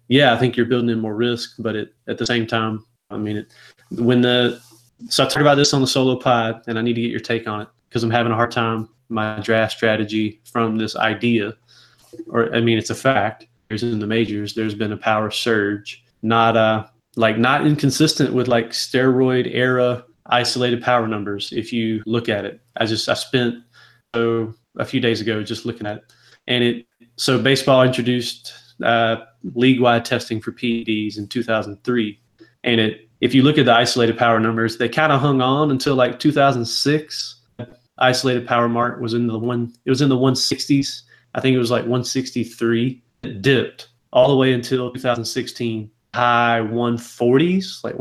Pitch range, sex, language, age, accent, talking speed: 115-130 Hz, male, English, 20-39, American, 190 wpm